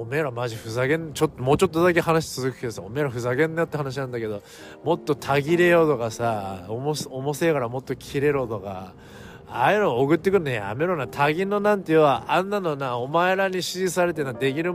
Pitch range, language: 125-170 Hz, Japanese